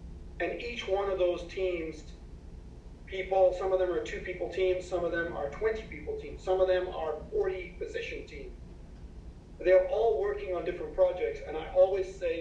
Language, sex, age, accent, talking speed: English, male, 40-59, American, 185 wpm